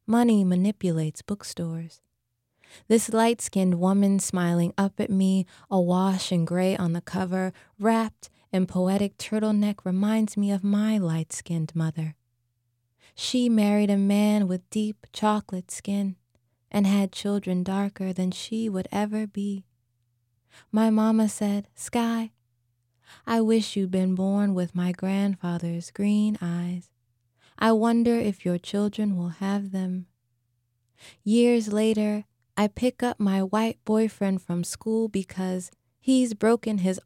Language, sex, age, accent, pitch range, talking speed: English, female, 20-39, American, 175-210 Hz, 130 wpm